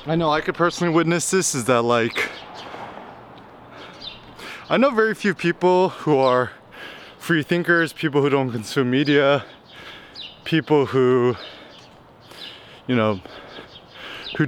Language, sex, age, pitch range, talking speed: English, male, 20-39, 130-160 Hz, 120 wpm